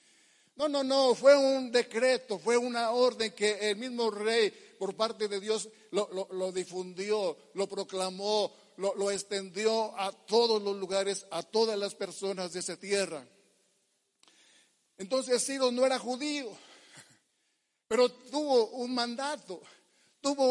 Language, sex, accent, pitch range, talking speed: Spanish, male, Mexican, 210-250 Hz, 140 wpm